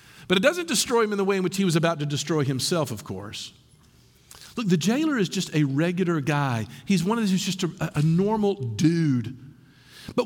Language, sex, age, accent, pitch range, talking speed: English, male, 50-69, American, 135-195 Hz, 215 wpm